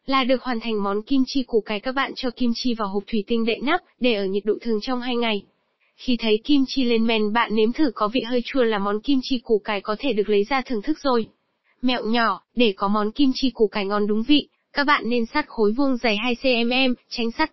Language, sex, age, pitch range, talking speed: Vietnamese, female, 20-39, 215-265 Hz, 265 wpm